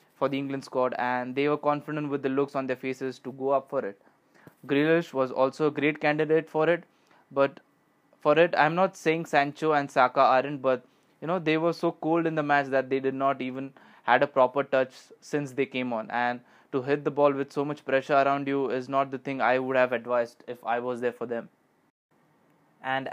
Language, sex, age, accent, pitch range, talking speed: English, male, 20-39, Indian, 125-140 Hz, 225 wpm